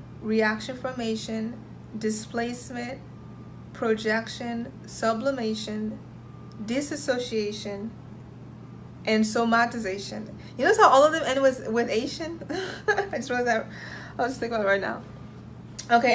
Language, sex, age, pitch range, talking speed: English, female, 20-39, 220-265 Hz, 110 wpm